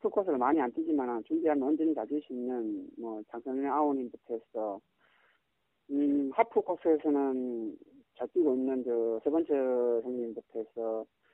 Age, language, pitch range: 40-59, Korean, 125-190 Hz